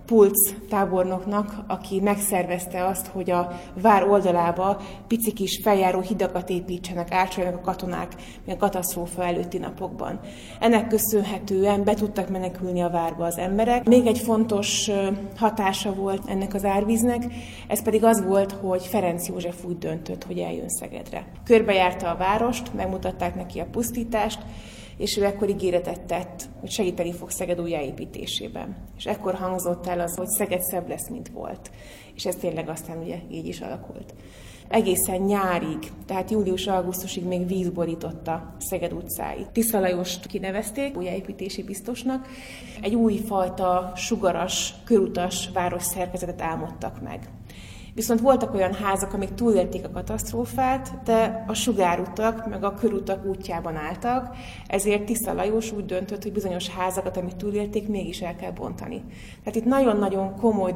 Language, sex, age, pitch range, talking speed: Hungarian, female, 20-39, 180-210 Hz, 140 wpm